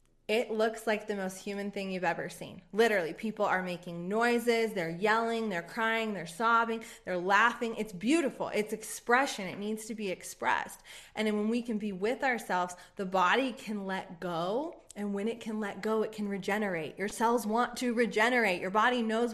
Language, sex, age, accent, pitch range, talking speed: English, female, 20-39, American, 195-240 Hz, 190 wpm